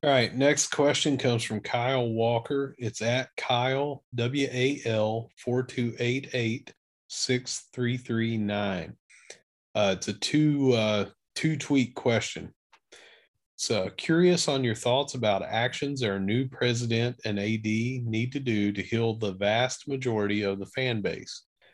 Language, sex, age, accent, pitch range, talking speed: English, male, 40-59, American, 105-130 Hz, 115 wpm